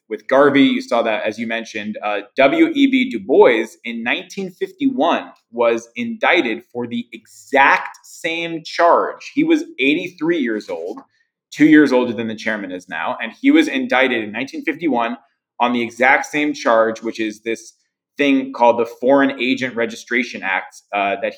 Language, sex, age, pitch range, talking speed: English, male, 20-39, 115-170 Hz, 160 wpm